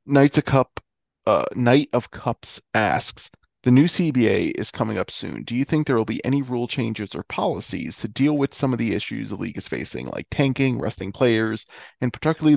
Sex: male